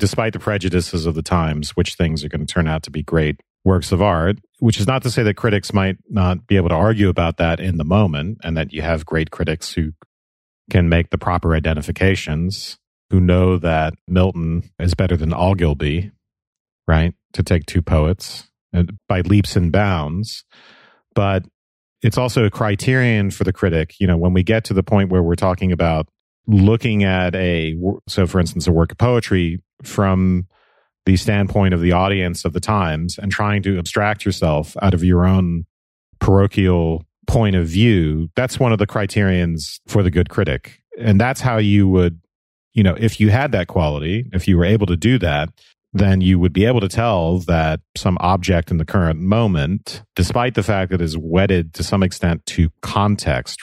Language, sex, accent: English, male, American